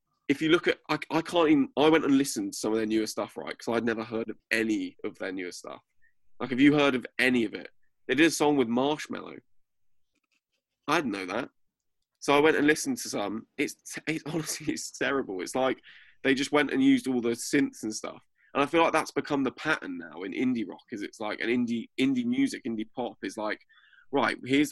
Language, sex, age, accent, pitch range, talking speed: English, male, 20-39, British, 110-160 Hz, 235 wpm